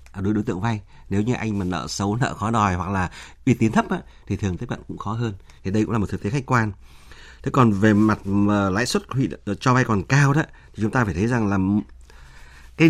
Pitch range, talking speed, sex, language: 95-125 Hz, 255 wpm, male, Vietnamese